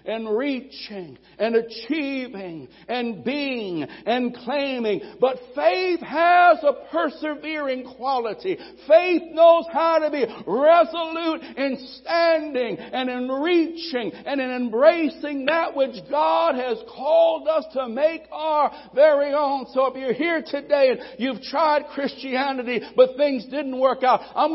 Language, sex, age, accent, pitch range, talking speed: English, male, 60-79, American, 265-335 Hz, 130 wpm